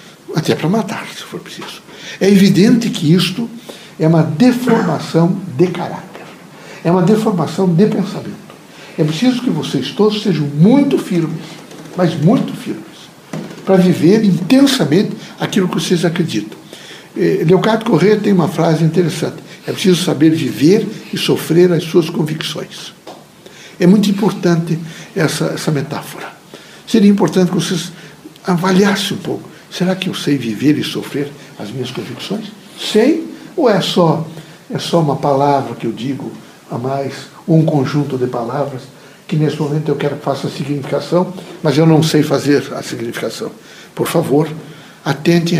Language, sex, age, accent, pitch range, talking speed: Portuguese, male, 60-79, Brazilian, 145-190 Hz, 145 wpm